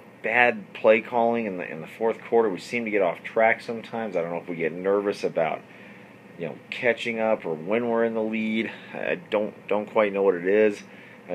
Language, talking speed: English, 225 wpm